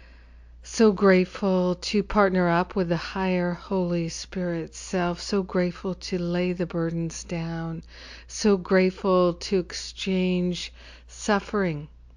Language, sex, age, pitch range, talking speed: English, female, 50-69, 155-185 Hz, 115 wpm